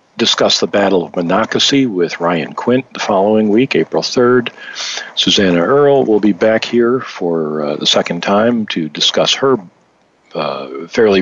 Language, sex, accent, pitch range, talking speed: English, male, American, 90-110 Hz, 155 wpm